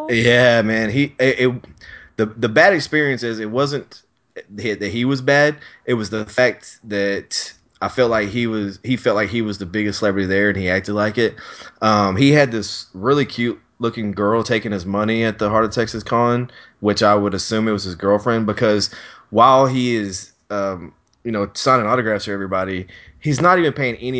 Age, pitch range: 20-39, 95-115 Hz